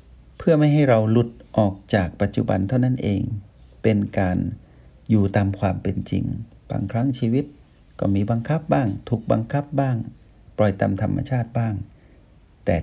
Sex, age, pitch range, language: male, 60-79, 100-130 Hz, Thai